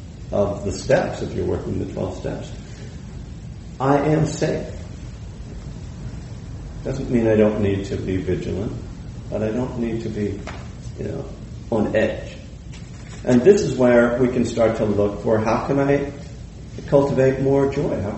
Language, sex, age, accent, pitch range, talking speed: English, male, 50-69, American, 95-125 Hz, 155 wpm